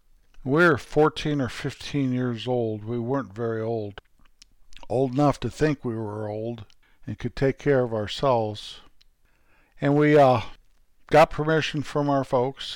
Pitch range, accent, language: 115-140 Hz, American, English